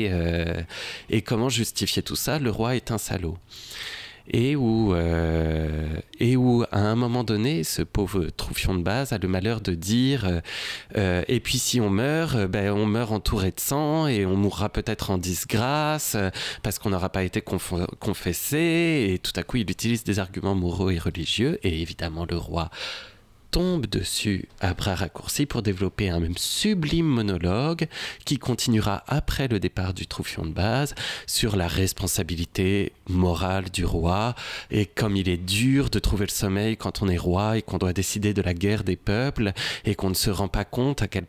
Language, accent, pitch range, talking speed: French, French, 95-125 Hz, 185 wpm